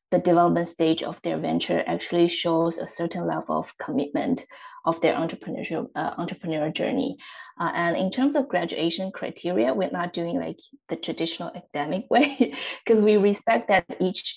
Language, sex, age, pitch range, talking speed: English, female, 20-39, 165-200 Hz, 160 wpm